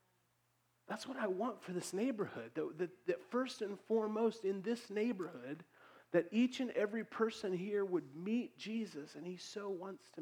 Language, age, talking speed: English, 40-59, 175 wpm